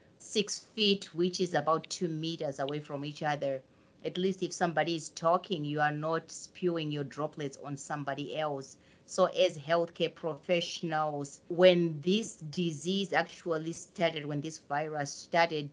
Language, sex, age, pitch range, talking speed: English, female, 30-49, 145-175 Hz, 150 wpm